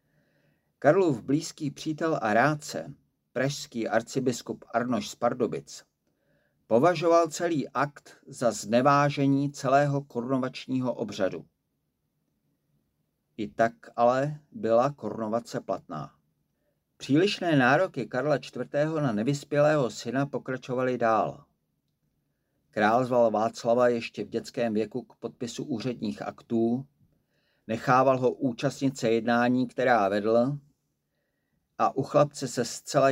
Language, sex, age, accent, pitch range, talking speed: Czech, male, 50-69, native, 115-140 Hz, 100 wpm